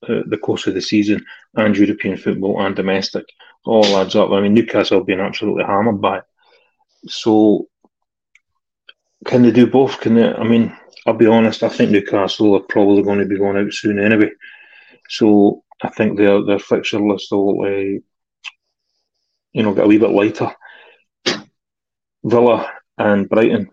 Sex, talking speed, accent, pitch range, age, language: male, 160 wpm, British, 100-120 Hz, 30-49, English